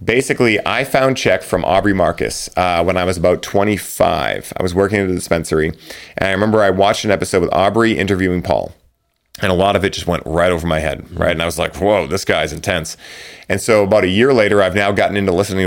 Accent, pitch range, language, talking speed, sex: American, 90-105 Hz, English, 235 wpm, male